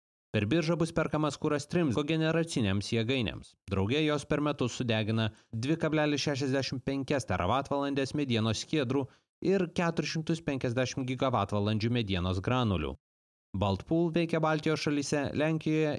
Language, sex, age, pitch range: English, male, 30-49, 105-155 Hz